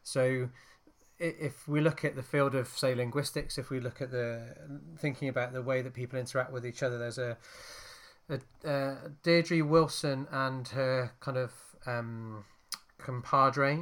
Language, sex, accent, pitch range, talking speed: English, male, British, 125-140 Hz, 160 wpm